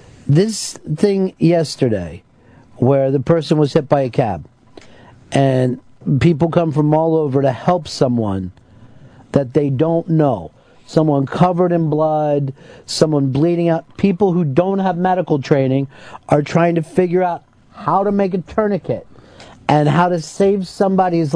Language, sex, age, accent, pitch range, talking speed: English, male, 50-69, American, 140-185 Hz, 145 wpm